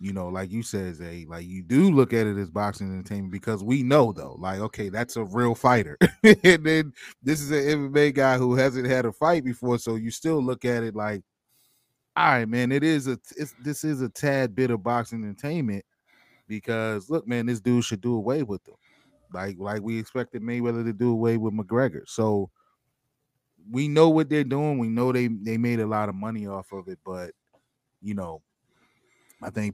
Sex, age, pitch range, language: male, 20-39, 90-120 Hz, English